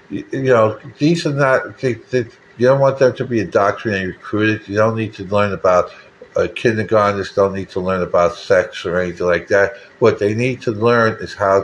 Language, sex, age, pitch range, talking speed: English, male, 60-79, 100-125 Hz, 215 wpm